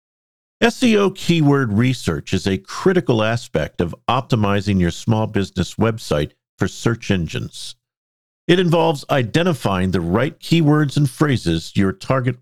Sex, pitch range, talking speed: male, 100-140 Hz, 125 wpm